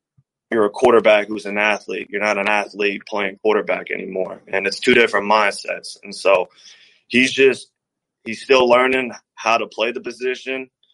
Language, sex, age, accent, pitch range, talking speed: English, male, 20-39, American, 105-115 Hz, 165 wpm